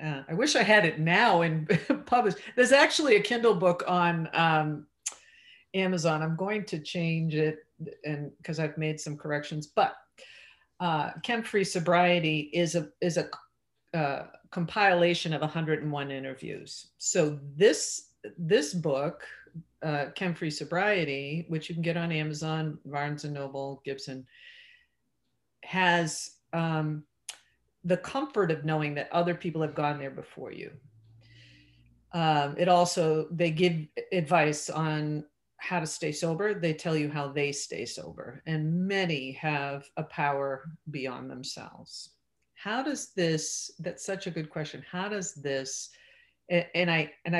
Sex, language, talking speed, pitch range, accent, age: female, English, 140 wpm, 150-180 Hz, American, 50-69